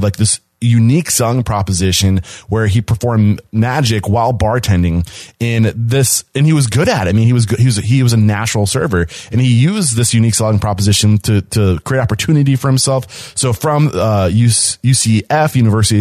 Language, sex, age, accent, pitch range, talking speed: English, male, 30-49, American, 105-125 Hz, 185 wpm